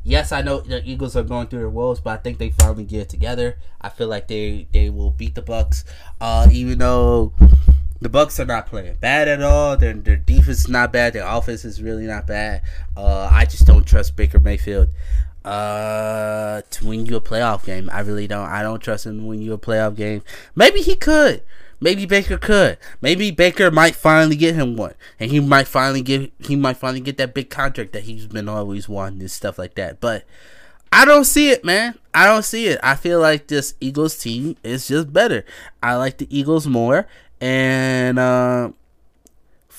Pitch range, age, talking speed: 100-135 Hz, 20-39, 205 wpm